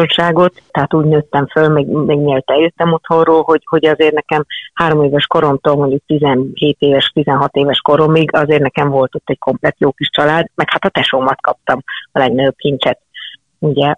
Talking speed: 165 wpm